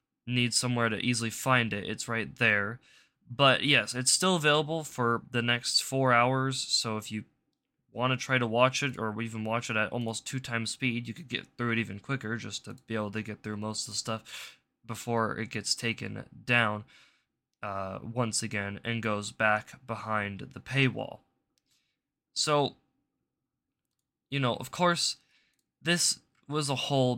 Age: 20-39